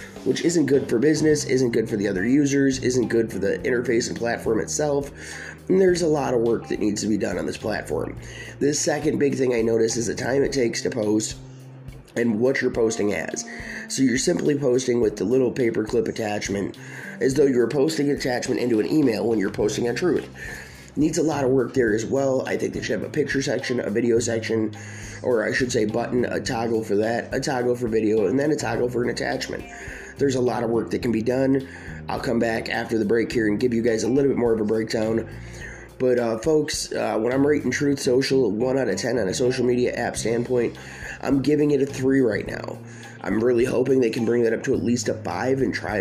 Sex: male